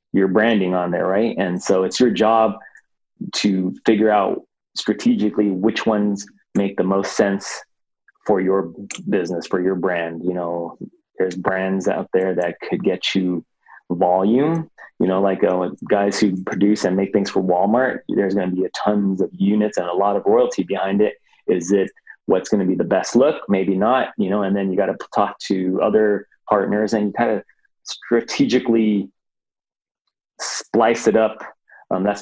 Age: 20-39